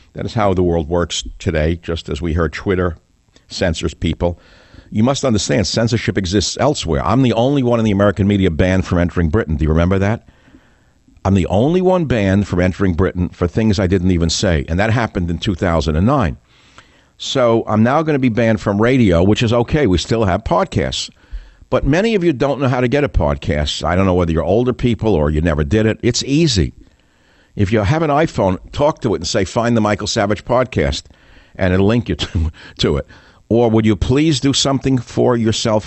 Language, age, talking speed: English, 60-79, 210 wpm